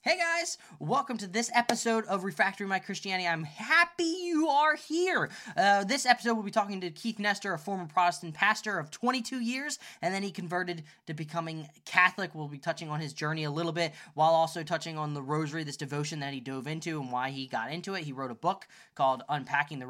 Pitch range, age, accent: 135-185 Hz, 10-29, American